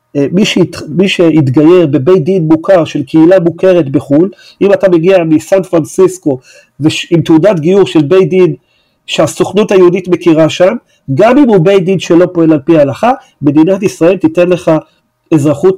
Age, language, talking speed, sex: 40-59, Hebrew, 160 wpm, male